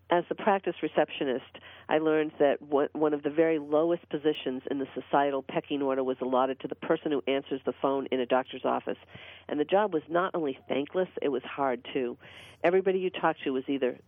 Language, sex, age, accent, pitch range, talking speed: English, female, 50-69, American, 140-175 Hz, 205 wpm